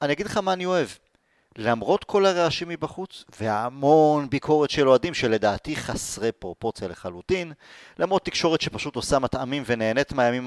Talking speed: 145 wpm